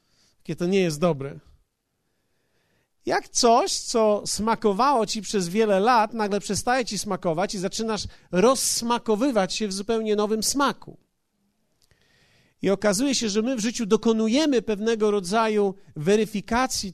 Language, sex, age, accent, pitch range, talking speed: Polish, male, 50-69, native, 185-230 Hz, 125 wpm